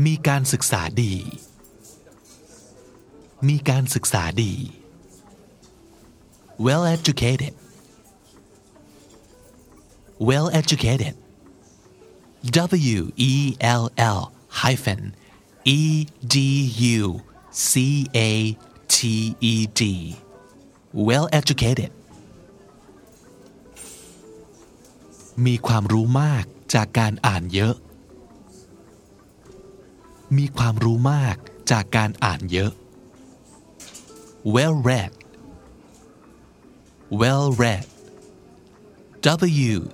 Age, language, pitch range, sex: 30-49, Thai, 105-135 Hz, male